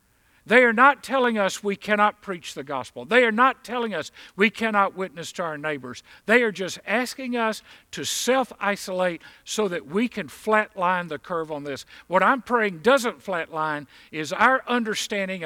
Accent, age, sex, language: American, 50-69, male, English